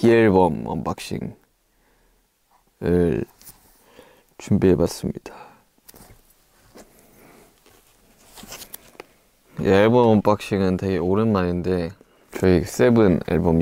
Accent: native